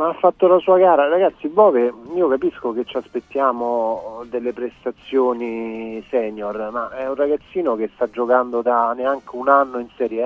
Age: 40-59